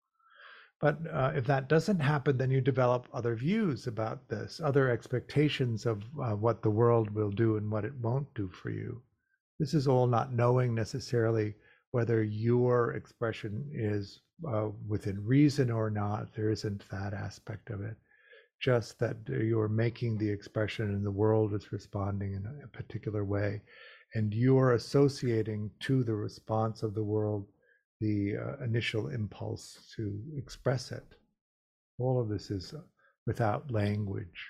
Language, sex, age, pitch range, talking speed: English, male, 50-69, 105-125 Hz, 155 wpm